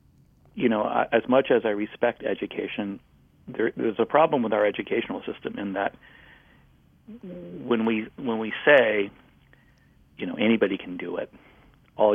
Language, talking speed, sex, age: English, 150 wpm, male, 40-59